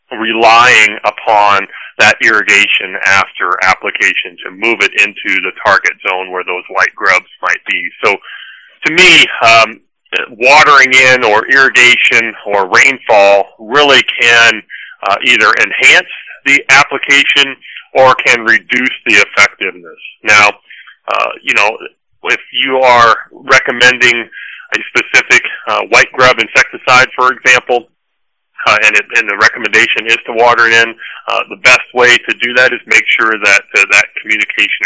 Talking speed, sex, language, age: 140 wpm, male, English, 30-49